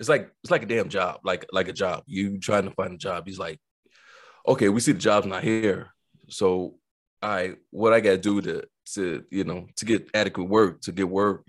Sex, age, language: male, 30-49, English